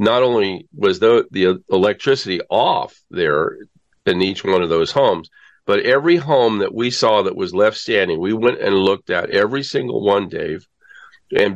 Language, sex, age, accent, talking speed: English, male, 50-69, American, 175 wpm